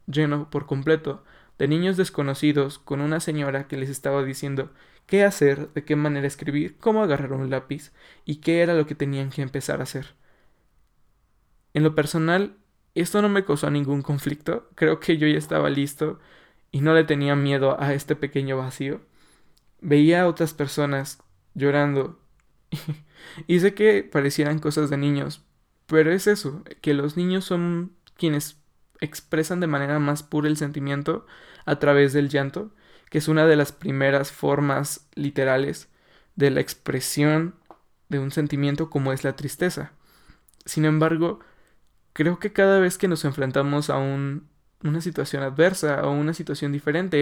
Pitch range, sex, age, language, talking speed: 140-160 Hz, male, 20-39, Spanish, 160 wpm